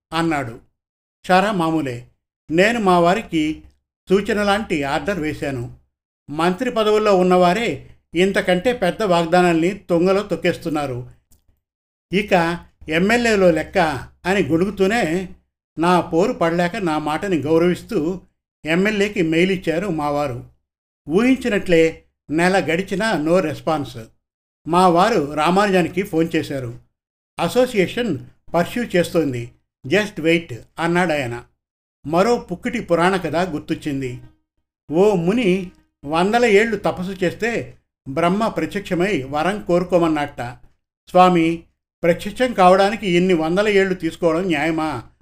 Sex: male